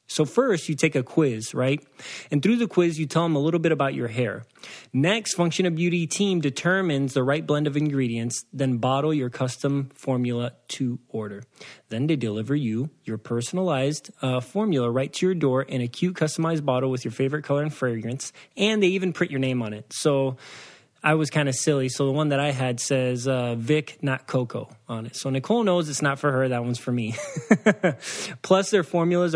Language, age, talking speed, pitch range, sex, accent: English, 20-39, 210 wpm, 130-170 Hz, male, American